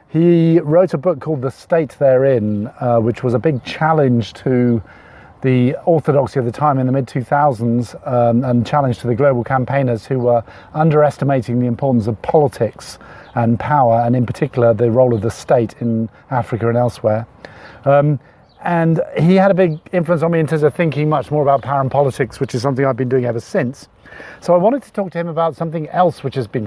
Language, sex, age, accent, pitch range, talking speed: English, male, 40-59, British, 120-160 Hz, 205 wpm